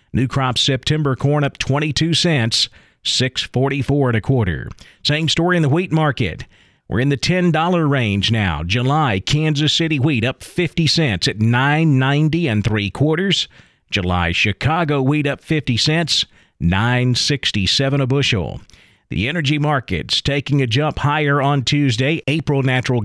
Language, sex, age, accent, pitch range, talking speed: English, male, 40-59, American, 120-155 Hz, 145 wpm